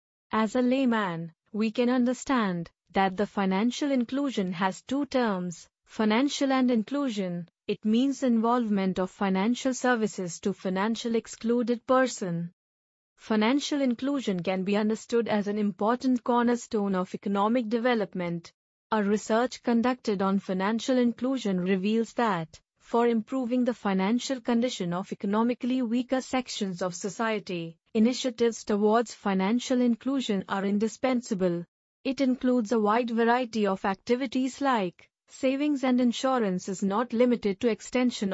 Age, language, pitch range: 30-49, English, 200-250 Hz